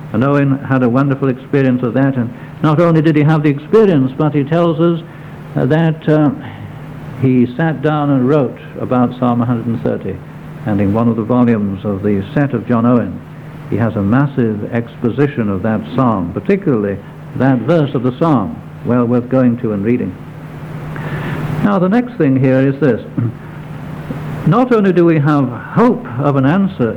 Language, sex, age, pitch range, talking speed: English, male, 60-79, 130-160 Hz, 175 wpm